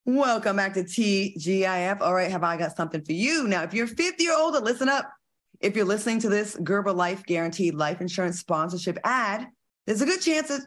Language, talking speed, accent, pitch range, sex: English, 215 wpm, American, 170-235 Hz, female